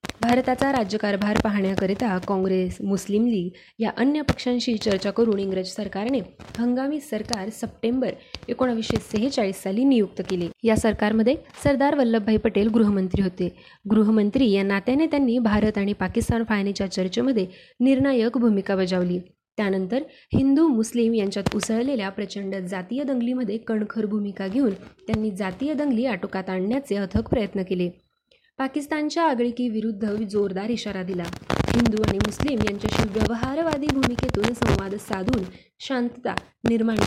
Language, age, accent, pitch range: Marathi, 20-39, native, 195-245 Hz